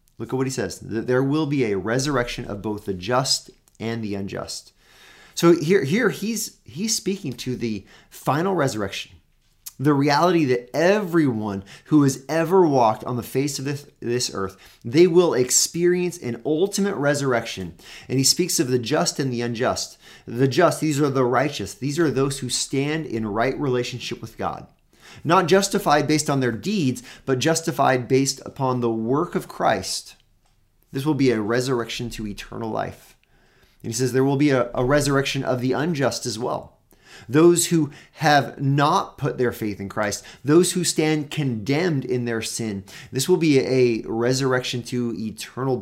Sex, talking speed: male, 175 wpm